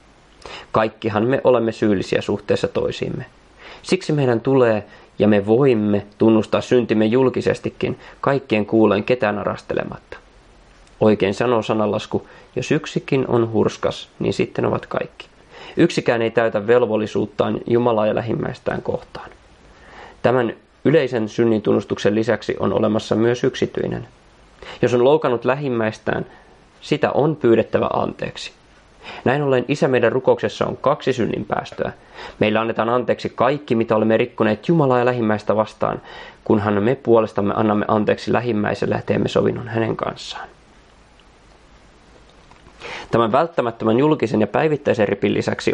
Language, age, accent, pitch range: Finnish, 20-39, native, 110-125 Hz